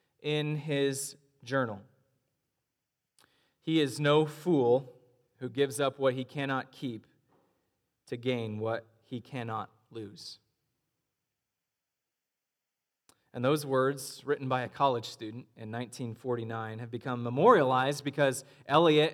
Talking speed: 110 wpm